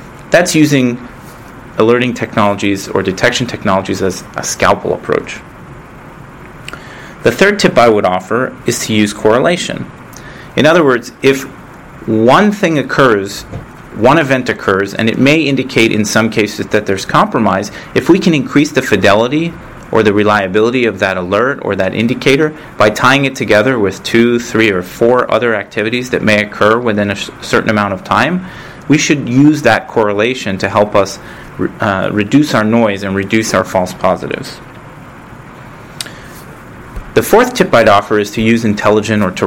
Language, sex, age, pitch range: English, male, 30-49, 100-130 Hz